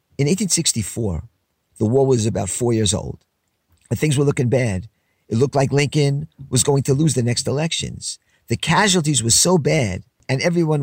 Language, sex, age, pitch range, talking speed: English, male, 50-69, 110-155 Hz, 175 wpm